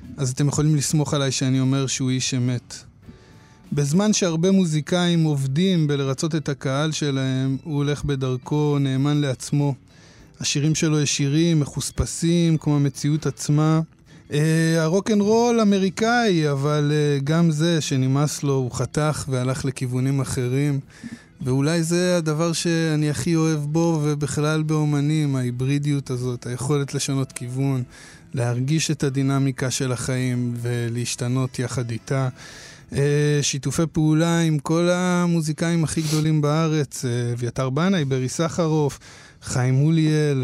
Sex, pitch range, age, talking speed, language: male, 130-155 Hz, 20-39, 115 wpm, Hebrew